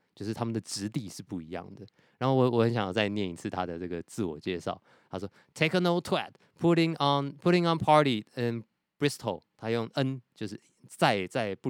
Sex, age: male, 20-39